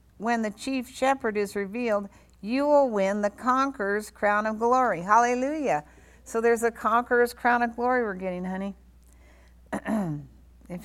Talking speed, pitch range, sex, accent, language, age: 145 wpm, 195-235 Hz, female, American, English, 60-79